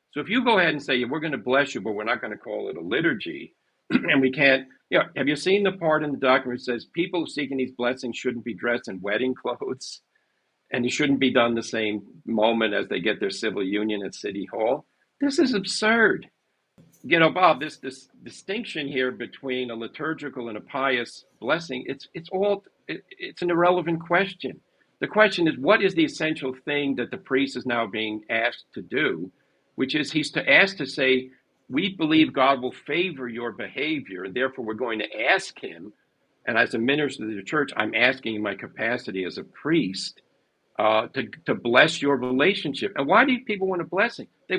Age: 50-69